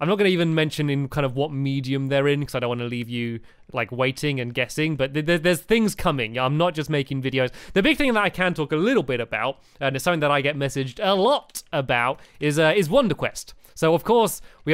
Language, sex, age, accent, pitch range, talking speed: English, male, 30-49, British, 140-180 Hz, 265 wpm